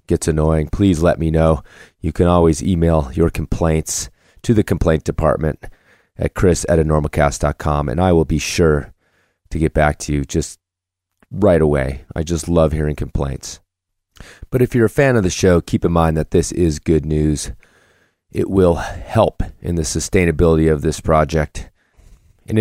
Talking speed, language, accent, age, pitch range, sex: 165 wpm, English, American, 30-49, 80-95 Hz, male